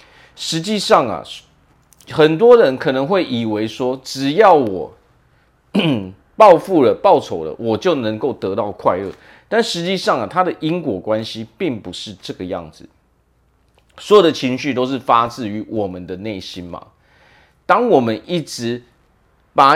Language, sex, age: Chinese, male, 40-59